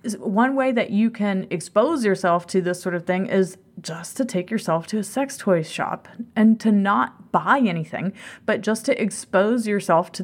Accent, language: American, English